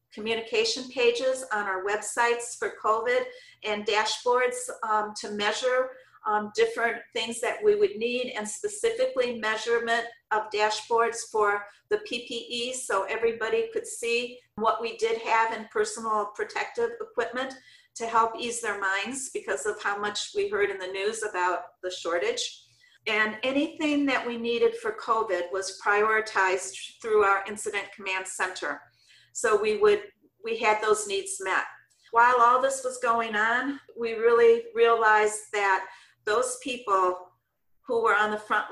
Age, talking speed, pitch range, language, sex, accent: 50-69, 145 wpm, 210-255 Hz, English, female, American